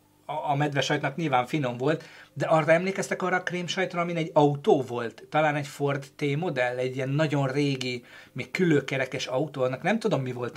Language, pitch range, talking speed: Hungarian, 130-160 Hz, 195 wpm